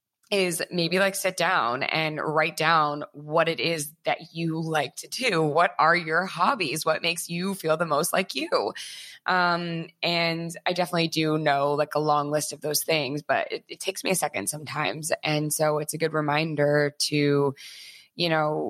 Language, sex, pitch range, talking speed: English, female, 150-170 Hz, 185 wpm